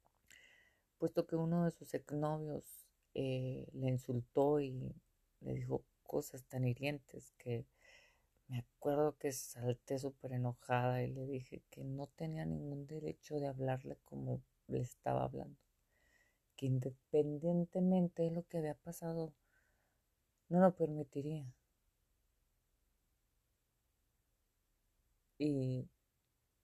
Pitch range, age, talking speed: 125-150 Hz, 40-59, 105 wpm